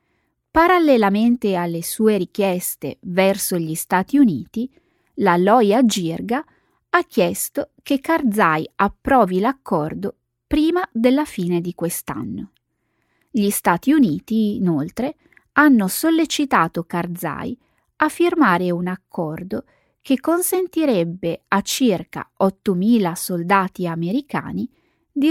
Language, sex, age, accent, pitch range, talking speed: Italian, female, 20-39, native, 180-270 Hz, 95 wpm